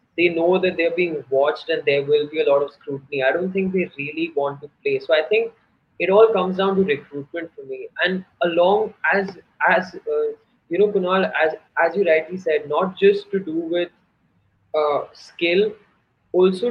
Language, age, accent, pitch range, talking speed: English, 20-39, Indian, 160-220 Hz, 195 wpm